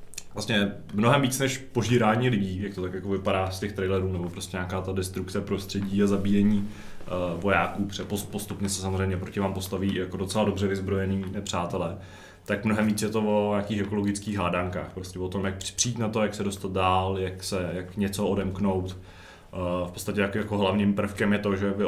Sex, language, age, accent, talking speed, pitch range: male, Czech, 20-39, native, 190 wpm, 95-105 Hz